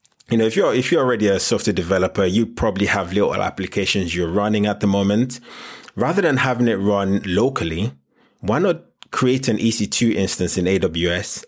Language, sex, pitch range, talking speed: English, male, 95-115 Hz, 180 wpm